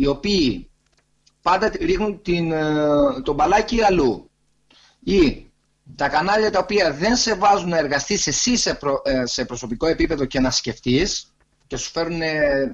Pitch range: 135-220 Hz